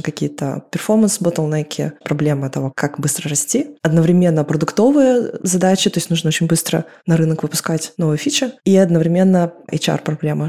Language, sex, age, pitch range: Russian, female, 20-39, 155-180 Hz